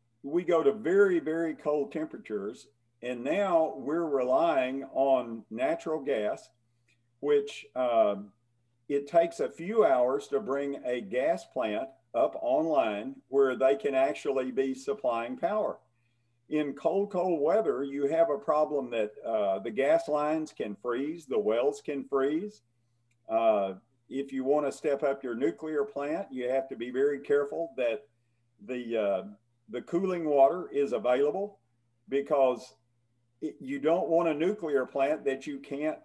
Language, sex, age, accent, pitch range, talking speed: English, male, 50-69, American, 120-160 Hz, 145 wpm